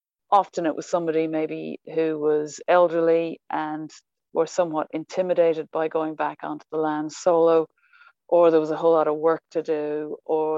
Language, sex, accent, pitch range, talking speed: English, female, Irish, 155-180 Hz, 170 wpm